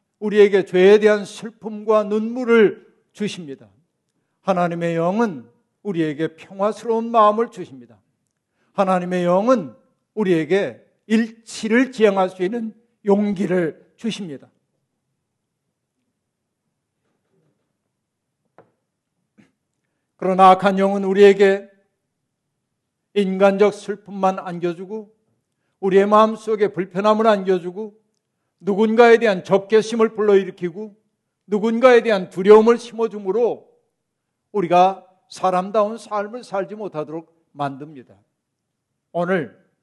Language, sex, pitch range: Korean, male, 175-210 Hz